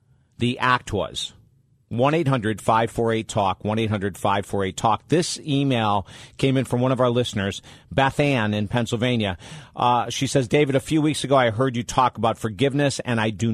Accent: American